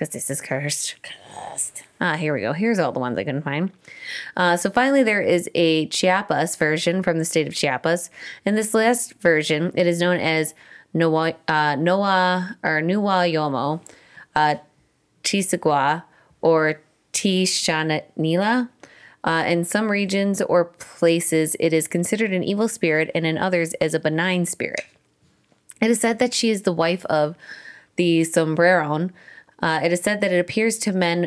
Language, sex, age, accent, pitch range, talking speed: English, female, 20-39, American, 160-185 Hz, 160 wpm